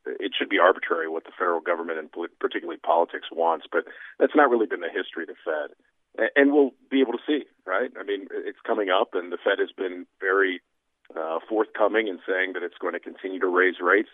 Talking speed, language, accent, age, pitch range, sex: 220 wpm, English, American, 40-59, 305-425 Hz, male